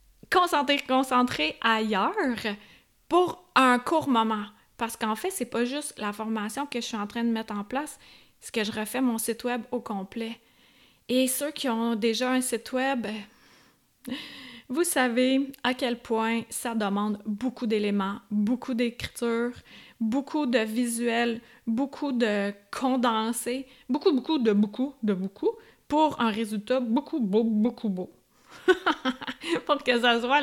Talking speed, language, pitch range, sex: 150 wpm, French, 225-280 Hz, female